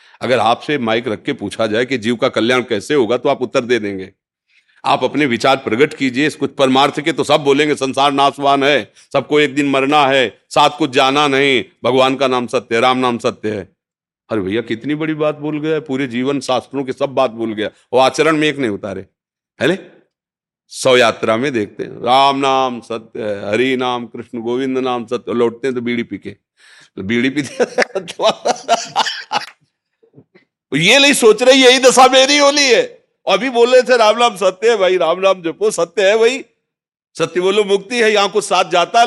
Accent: native